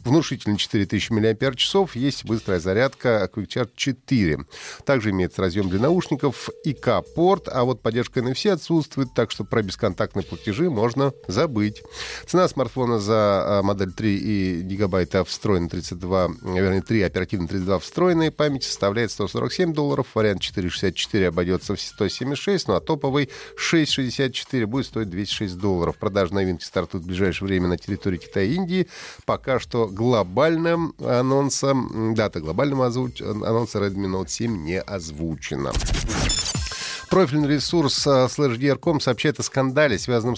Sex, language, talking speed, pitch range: male, Russian, 130 wpm, 105-145 Hz